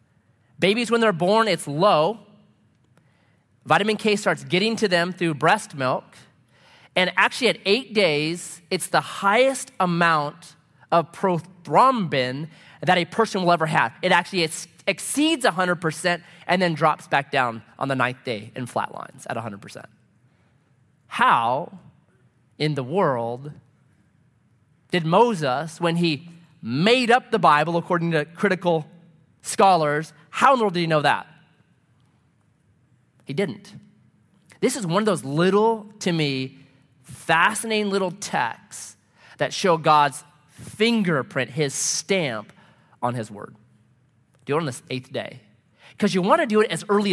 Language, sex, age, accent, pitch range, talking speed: English, male, 30-49, American, 140-200 Hz, 140 wpm